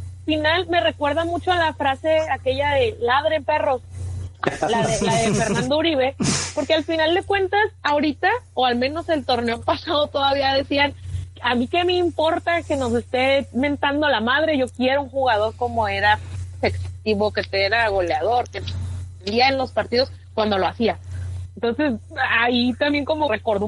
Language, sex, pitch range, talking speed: Spanish, female, 190-285 Hz, 165 wpm